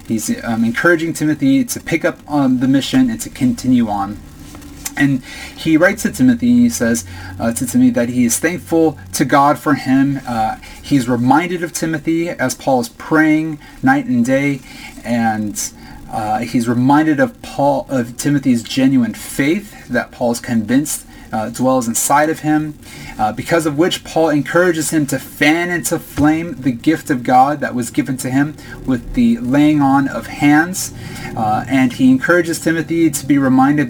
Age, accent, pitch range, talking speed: 30-49, American, 125-200 Hz, 175 wpm